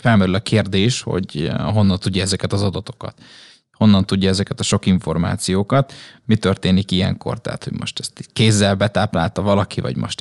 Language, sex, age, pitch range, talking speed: Hungarian, male, 20-39, 95-115 Hz, 160 wpm